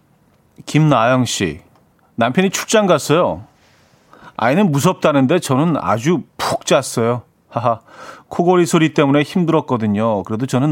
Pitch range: 115-155 Hz